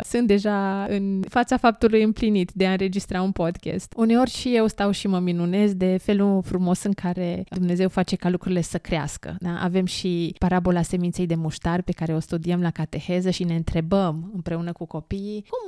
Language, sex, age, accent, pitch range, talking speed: Romanian, female, 20-39, native, 175-220 Hz, 190 wpm